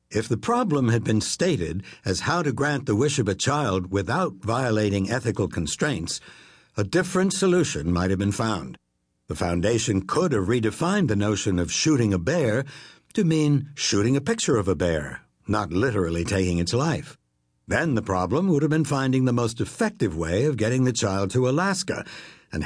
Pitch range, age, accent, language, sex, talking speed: 95-140 Hz, 60-79, American, English, male, 180 wpm